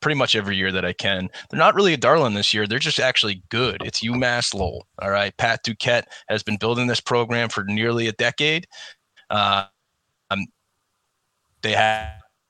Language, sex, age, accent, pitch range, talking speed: English, male, 20-39, American, 105-125 Hz, 180 wpm